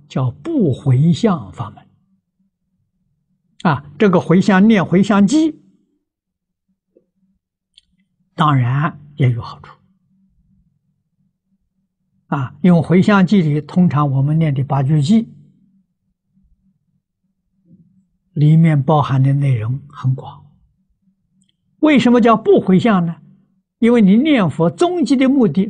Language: Chinese